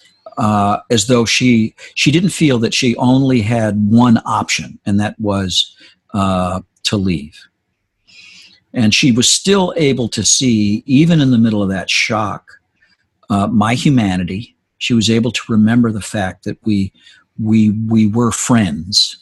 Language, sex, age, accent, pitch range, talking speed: English, male, 50-69, American, 100-125 Hz, 155 wpm